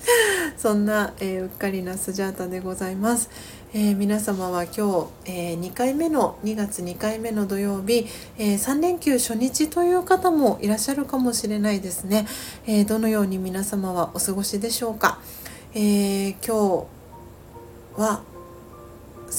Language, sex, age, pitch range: Japanese, female, 40-59, 185-225 Hz